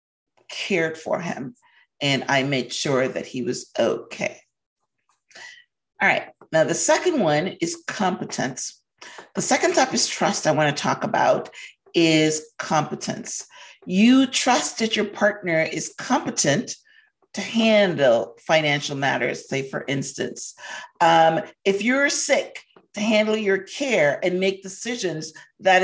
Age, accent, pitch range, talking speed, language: 50-69, American, 160-225 Hz, 130 wpm, English